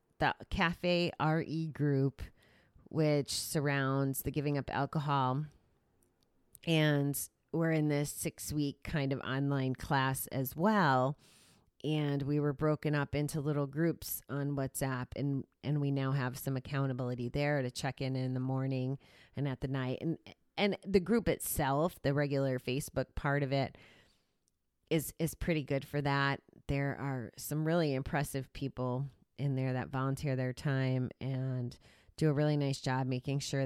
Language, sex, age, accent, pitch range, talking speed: English, female, 30-49, American, 130-155 Hz, 155 wpm